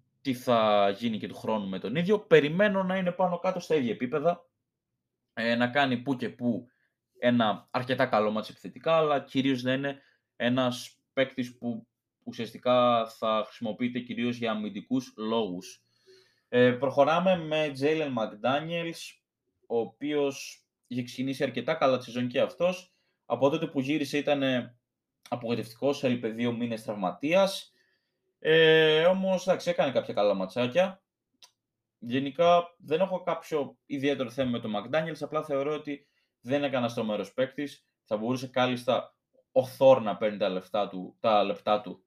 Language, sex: Greek, male